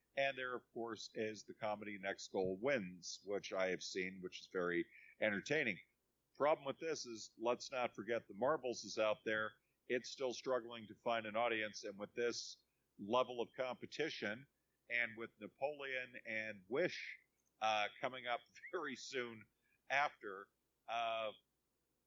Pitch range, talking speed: 105-125 Hz, 150 wpm